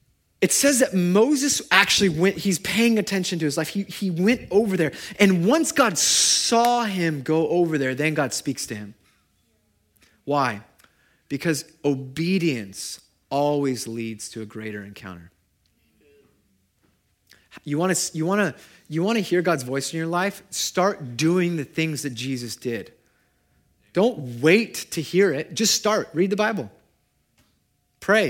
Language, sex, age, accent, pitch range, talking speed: English, male, 30-49, American, 145-200 Hz, 140 wpm